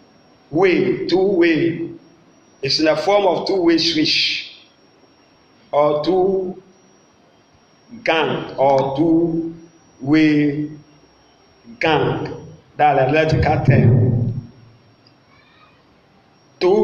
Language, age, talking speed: English, 50-69, 75 wpm